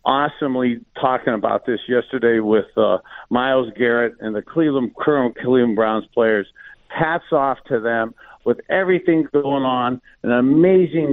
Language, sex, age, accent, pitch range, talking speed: English, male, 50-69, American, 115-140 Hz, 140 wpm